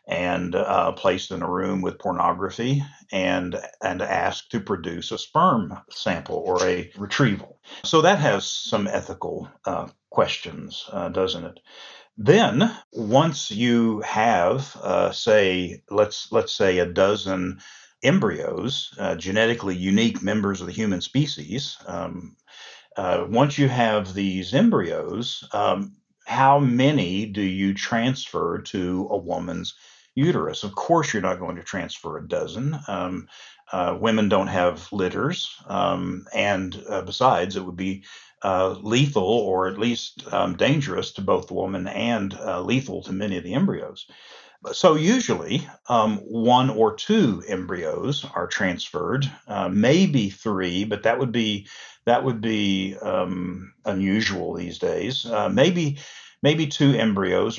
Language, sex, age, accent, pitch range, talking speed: English, male, 50-69, American, 95-130 Hz, 140 wpm